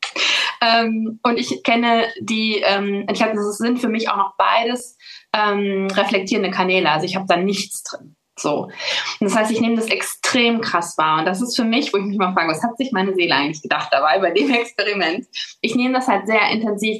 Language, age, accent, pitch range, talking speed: German, 20-39, German, 195-235 Hz, 215 wpm